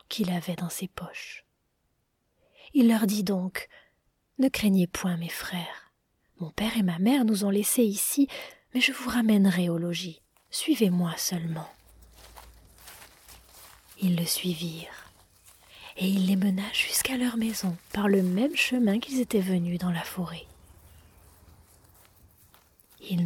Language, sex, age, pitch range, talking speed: French, female, 30-49, 175-225 Hz, 135 wpm